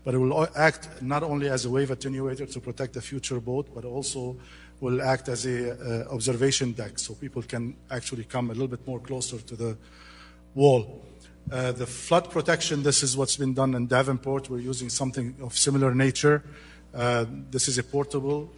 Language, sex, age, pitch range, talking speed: English, male, 50-69, 120-135 Hz, 190 wpm